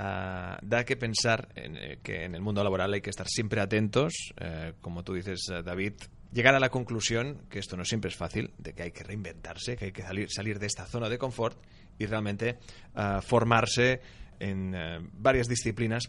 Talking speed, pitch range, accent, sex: 200 wpm, 95-115 Hz, Spanish, male